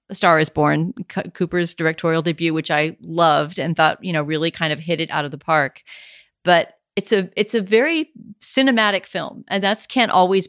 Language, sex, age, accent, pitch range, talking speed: English, female, 40-59, American, 160-195 Hz, 205 wpm